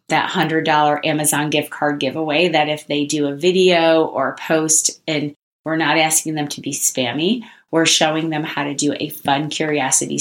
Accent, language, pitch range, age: American, English, 150-185 Hz, 30-49